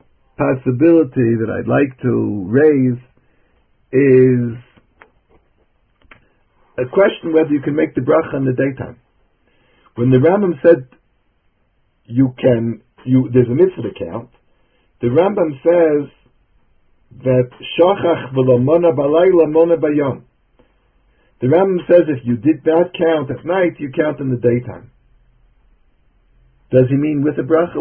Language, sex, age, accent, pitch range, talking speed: English, male, 60-79, American, 125-165 Hz, 120 wpm